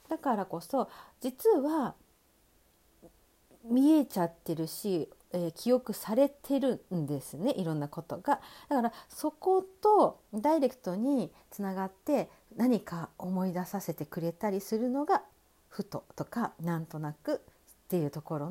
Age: 40-59